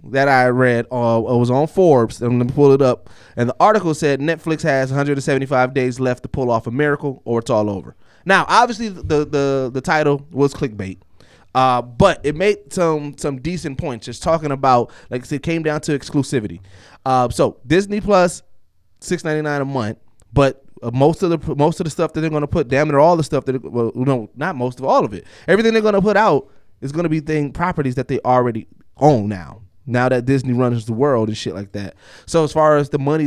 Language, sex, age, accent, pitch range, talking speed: English, male, 20-39, American, 115-150 Hz, 225 wpm